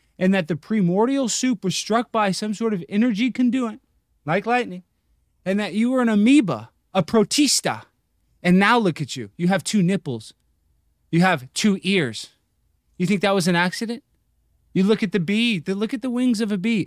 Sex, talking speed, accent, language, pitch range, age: male, 190 wpm, American, English, 140-205 Hz, 20-39